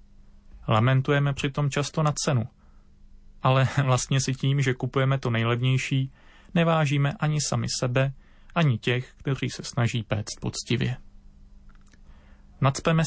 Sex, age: male, 30-49